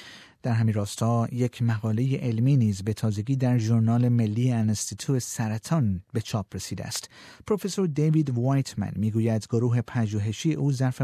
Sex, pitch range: male, 110-145 Hz